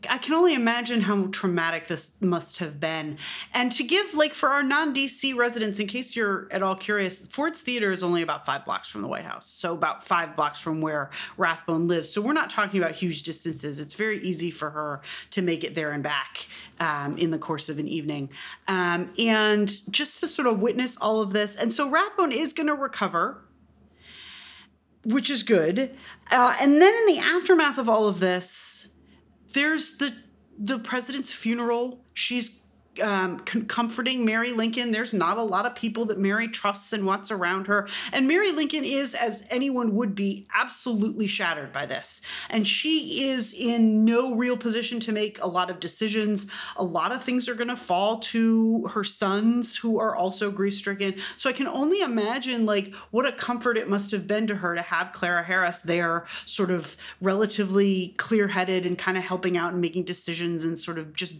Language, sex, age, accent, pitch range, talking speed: English, female, 30-49, American, 180-245 Hz, 190 wpm